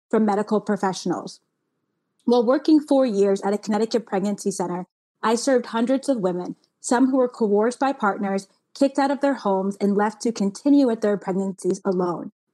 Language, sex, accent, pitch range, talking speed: English, female, American, 195-240 Hz, 170 wpm